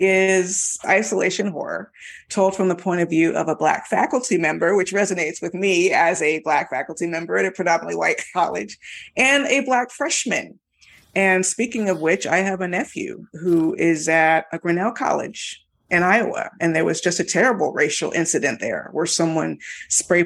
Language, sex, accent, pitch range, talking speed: English, female, American, 165-190 Hz, 180 wpm